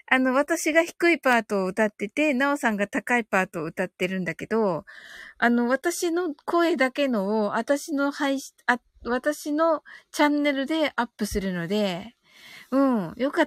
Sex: female